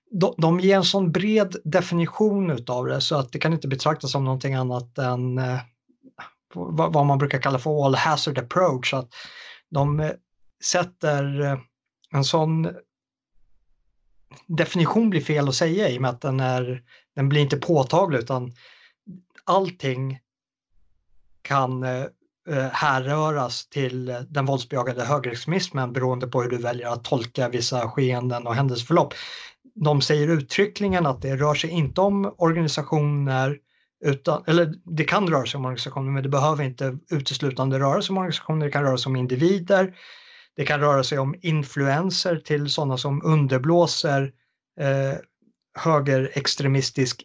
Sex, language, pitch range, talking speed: male, Swedish, 130-170 Hz, 140 wpm